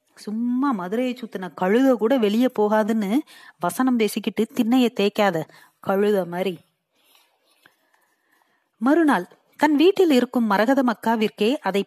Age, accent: 30-49, native